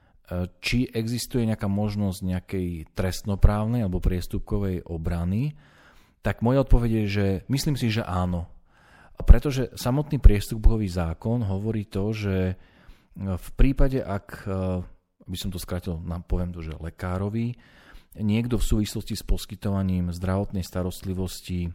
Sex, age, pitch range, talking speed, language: male, 40-59, 90-105 Hz, 120 wpm, Slovak